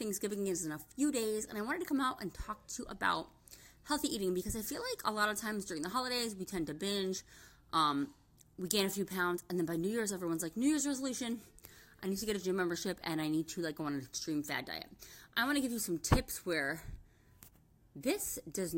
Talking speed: 250 wpm